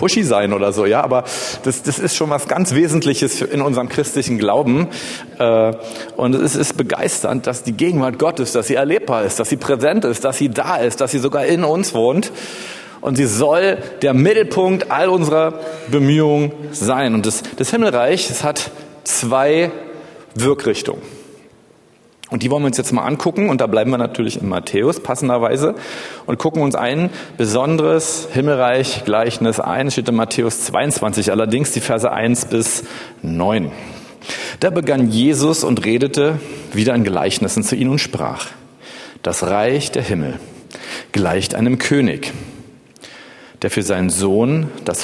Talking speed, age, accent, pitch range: 160 wpm, 40-59, German, 120-150 Hz